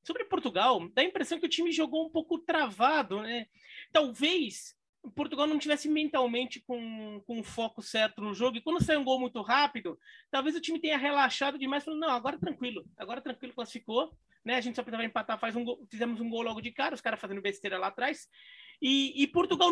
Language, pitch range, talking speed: Portuguese, 230-310 Hz, 210 wpm